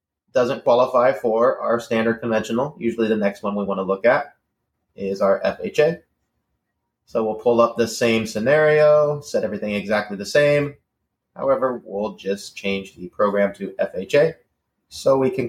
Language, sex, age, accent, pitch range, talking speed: English, male, 30-49, American, 100-130 Hz, 160 wpm